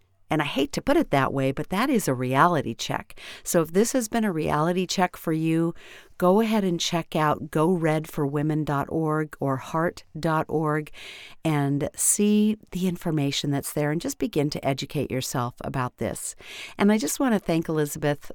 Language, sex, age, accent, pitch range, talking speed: English, female, 50-69, American, 145-175 Hz, 175 wpm